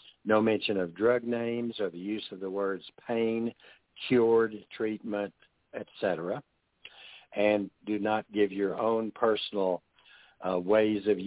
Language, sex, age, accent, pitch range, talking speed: English, male, 60-79, American, 95-115 Hz, 135 wpm